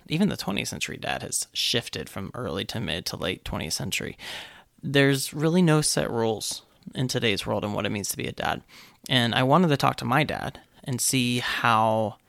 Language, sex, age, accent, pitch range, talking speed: English, male, 20-39, American, 115-135 Hz, 205 wpm